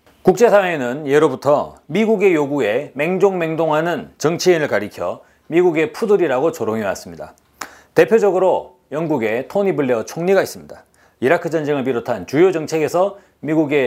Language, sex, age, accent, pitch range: Korean, male, 40-59, native, 145-200 Hz